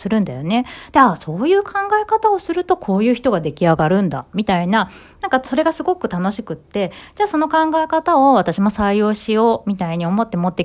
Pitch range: 190-320 Hz